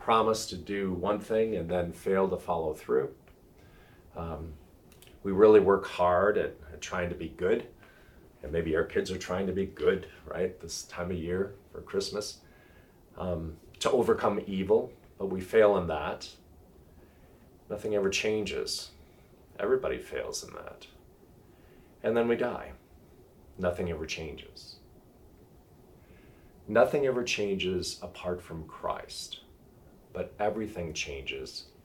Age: 40-59